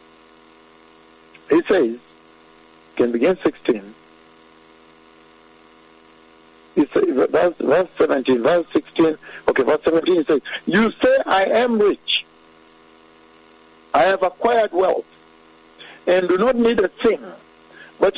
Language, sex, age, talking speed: English, male, 60-79, 100 wpm